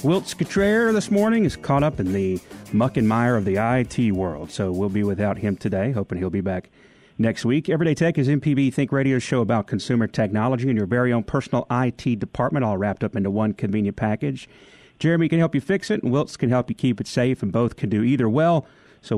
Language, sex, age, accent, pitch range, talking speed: English, male, 40-59, American, 110-145 Hz, 230 wpm